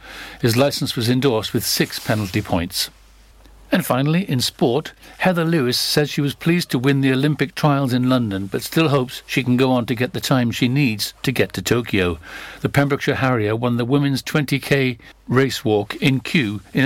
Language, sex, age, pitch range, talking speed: English, male, 60-79, 110-140 Hz, 190 wpm